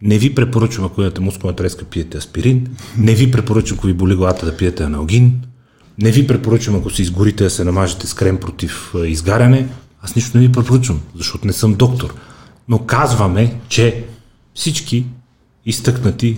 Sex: male